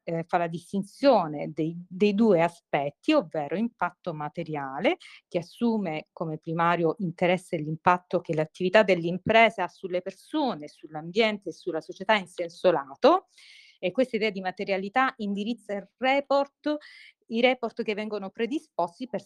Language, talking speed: Italian, 135 wpm